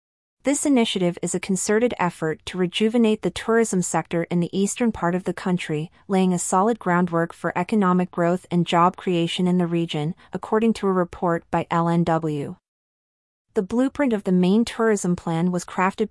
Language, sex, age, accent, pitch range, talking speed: English, female, 30-49, American, 170-205 Hz, 170 wpm